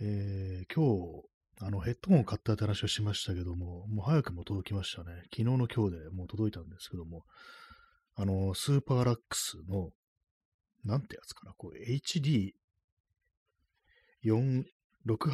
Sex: male